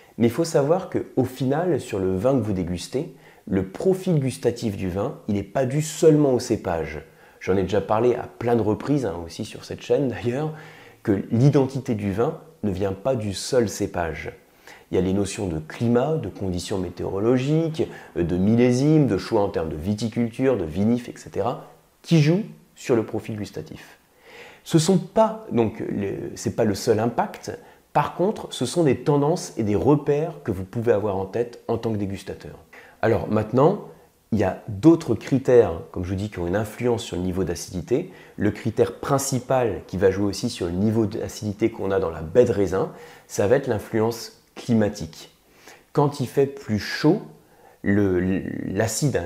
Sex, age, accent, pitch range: male, 30-49, French, 100-140 Hz